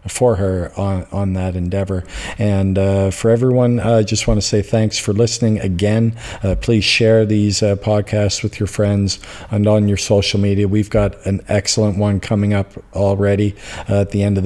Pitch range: 95-105 Hz